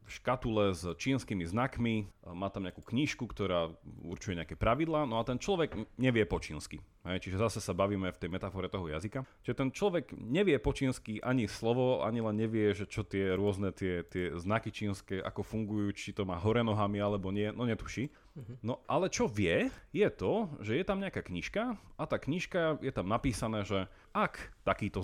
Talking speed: 185 wpm